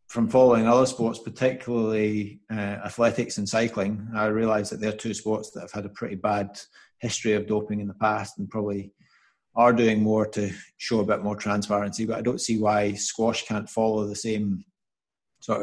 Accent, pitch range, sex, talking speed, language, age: British, 105-115 Hz, male, 190 wpm, English, 30-49